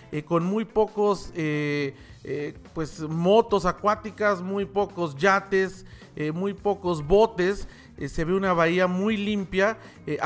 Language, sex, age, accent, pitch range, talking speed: Spanish, male, 40-59, Mexican, 155-195 Hz, 140 wpm